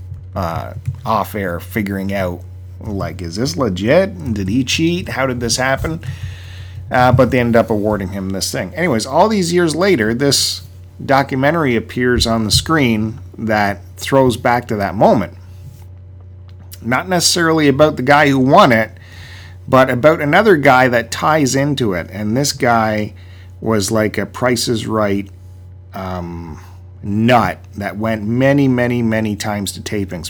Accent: American